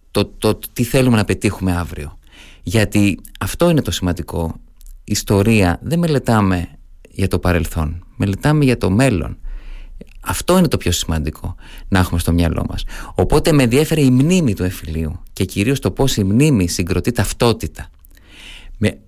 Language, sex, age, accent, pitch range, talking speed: Greek, male, 30-49, native, 90-130 Hz, 150 wpm